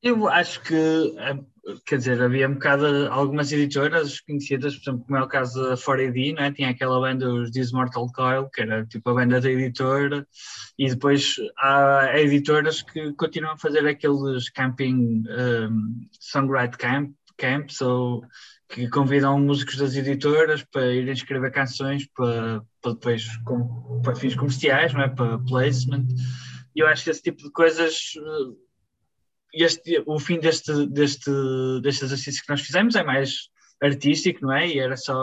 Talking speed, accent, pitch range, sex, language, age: 155 wpm, Portuguese, 130-150 Hz, male, Portuguese, 20-39